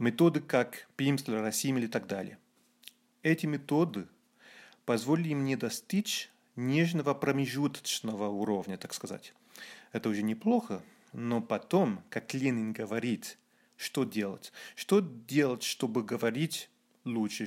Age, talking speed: 30-49, 110 wpm